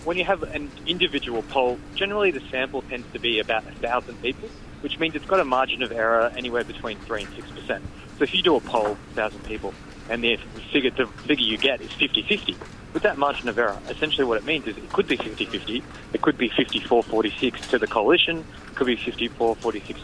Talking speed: 215 wpm